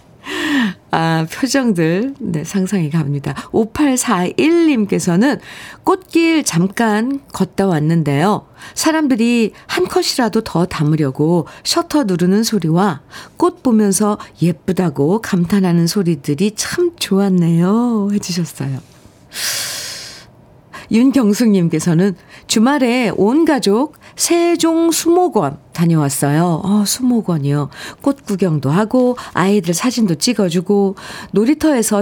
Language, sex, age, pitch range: Korean, female, 50-69, 165-240 Hz